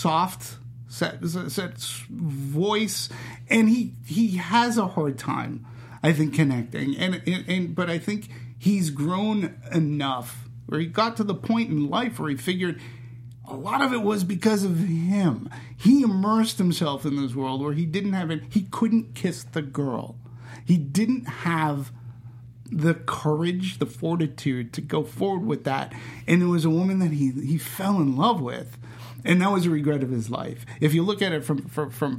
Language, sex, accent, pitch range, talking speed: English, male, American, 125-180 Hz, 185 wpm